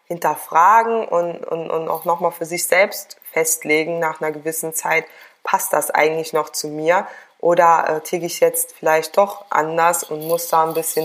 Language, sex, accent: German, female, German